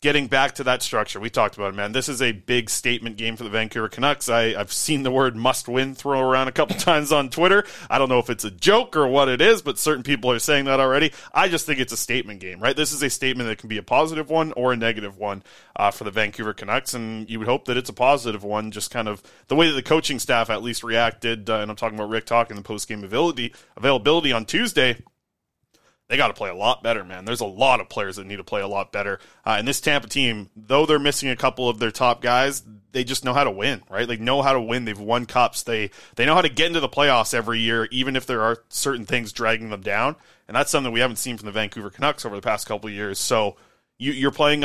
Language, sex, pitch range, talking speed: English, male, 115-140 Hz, 270 wpm